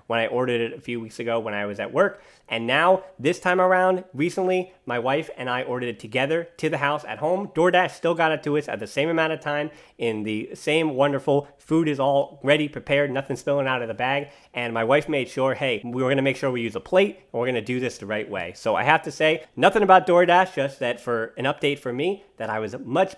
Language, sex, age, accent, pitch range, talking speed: English, male, 30-49, American, 120-155 Hz, 260 wpm